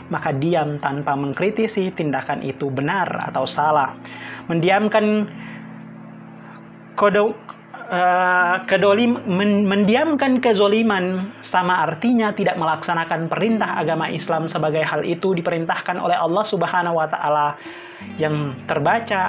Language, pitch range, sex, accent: Indonesian, 155-210 Hz, male, native